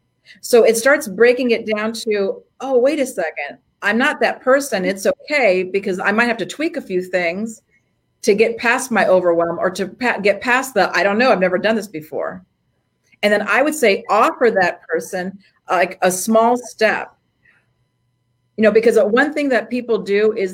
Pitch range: 195-255 Hz